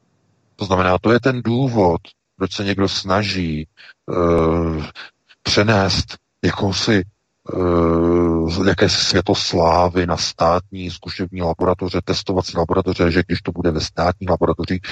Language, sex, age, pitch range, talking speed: Czech, male, 50-69, 90-115 Hz, 115 wpm